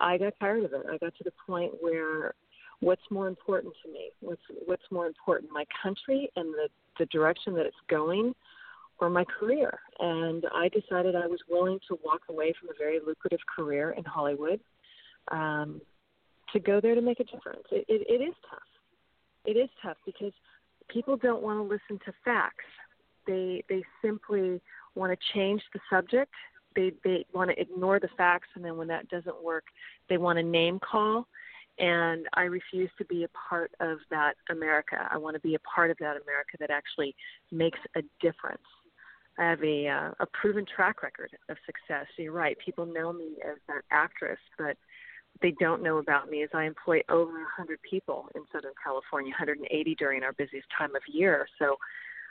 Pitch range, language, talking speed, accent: 160-210 Hz, English, 190 wpm, American